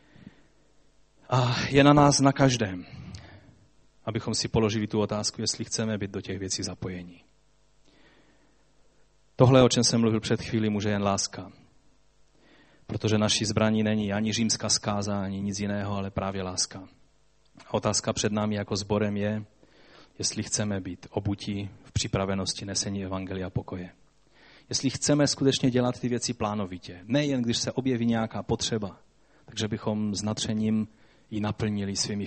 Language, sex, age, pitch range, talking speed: Czech, male, 30-49, 100-125 Hz, 140 wpm